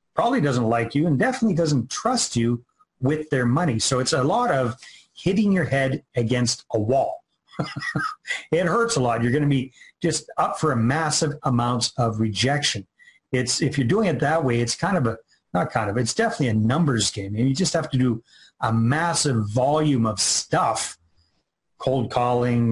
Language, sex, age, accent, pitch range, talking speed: English, male, 40-59, American, 115-150 Hz, 190 wpm